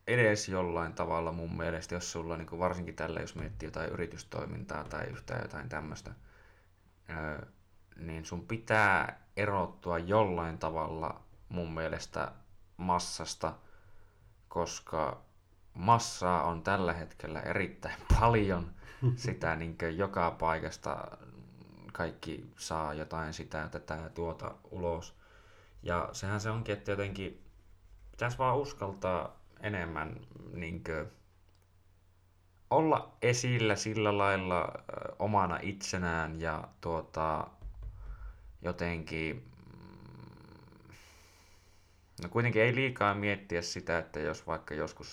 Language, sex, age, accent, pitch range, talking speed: Finnish, male, 20-39, native, 80-100 Hz, 100 wpm